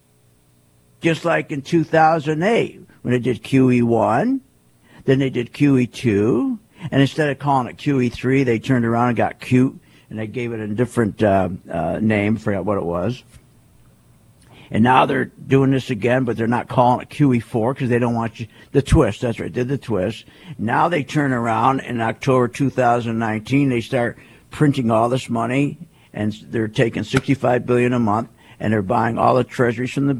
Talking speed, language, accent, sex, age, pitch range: 175 wpm, English, American, male, 50-69, 115-165 Hz